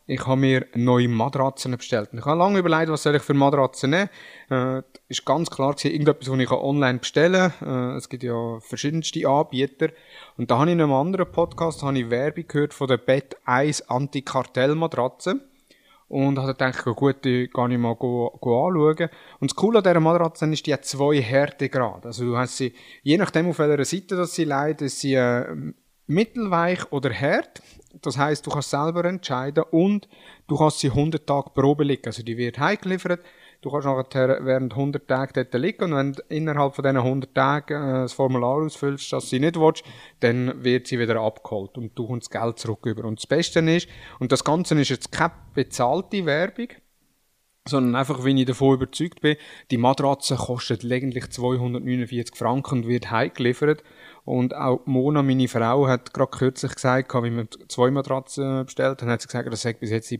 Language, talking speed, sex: German, 200 wpm, male